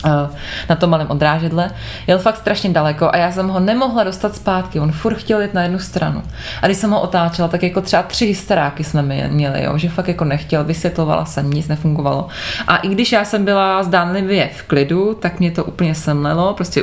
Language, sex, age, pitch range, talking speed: Czech, female, 20-39, 150-185 Hz, 205 wpm